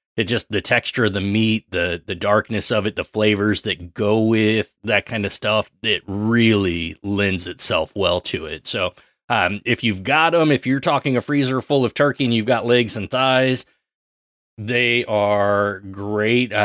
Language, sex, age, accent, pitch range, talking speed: English, male, 30-49, American, 100-120 Hz, 185 wpm